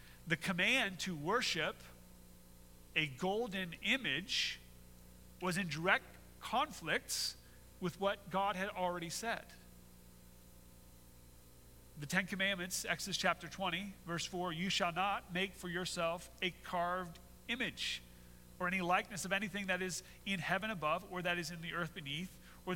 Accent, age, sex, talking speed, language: American, 40-59, male, 135 wpm, English